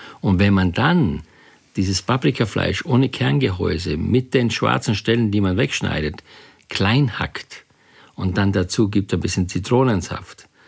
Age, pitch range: 50-69, 95-130 Hz